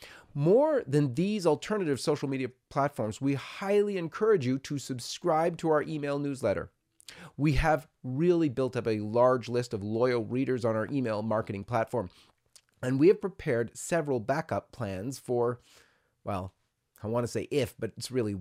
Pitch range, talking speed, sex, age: 110-150 Hz, 165 wpm, male, 30-49